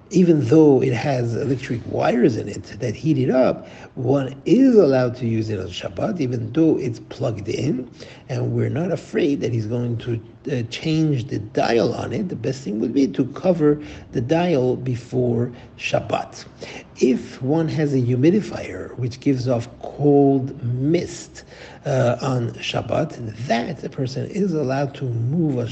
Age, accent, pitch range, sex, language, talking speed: 60-79, Italian, 115-140 Hz, male, English, 165 wpm